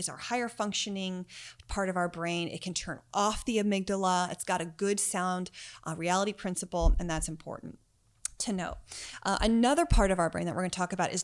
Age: 30-49